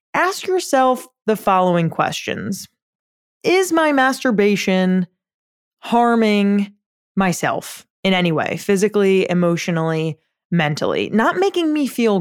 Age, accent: 20-39, American